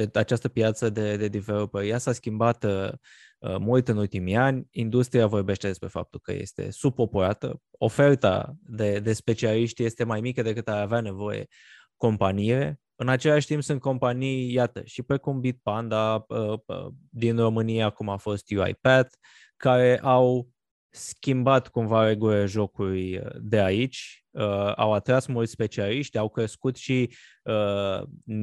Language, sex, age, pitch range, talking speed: Romanian, male, 20-39, 105-130 Hz, 140 wpm